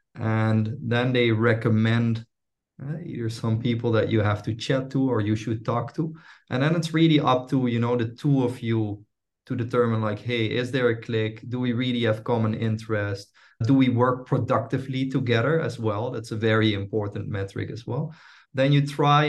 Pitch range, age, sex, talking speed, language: 110-135 Hz, 20-39, male, 195 wpm, English